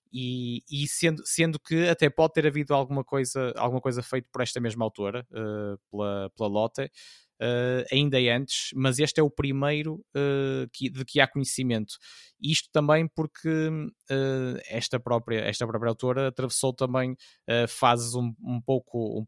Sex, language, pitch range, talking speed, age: male, Portuguese, 115-135 Hz, 170 wpm, 20-39